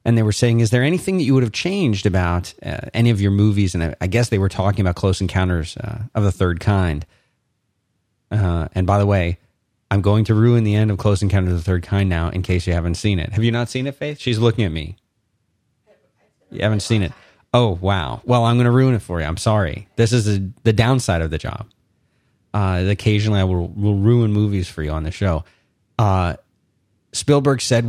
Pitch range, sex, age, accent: 95-120 Hz, male, 30-49, American